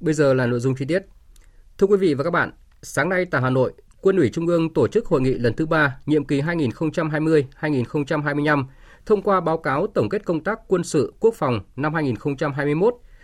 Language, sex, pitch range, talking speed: Vietnamese, male, 135-170 Hz, 210 wpm